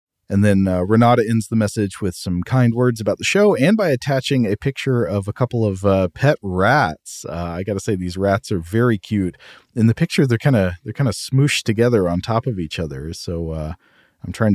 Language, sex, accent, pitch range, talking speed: English, male, American, 90-120 Hz, 230 wpm